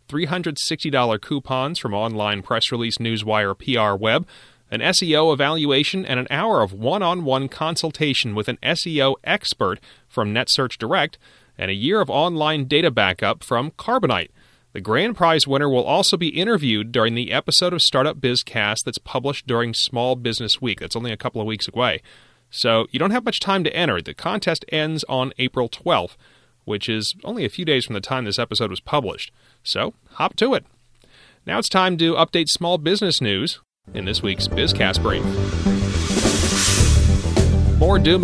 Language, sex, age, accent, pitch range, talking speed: English, male, 30-49, American, 110-150 Hz, 165 wpm